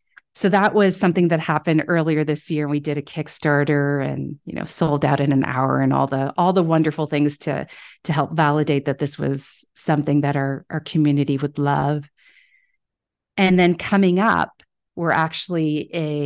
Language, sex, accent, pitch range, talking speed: English, female, American, 145-165 Hz, 180 wpm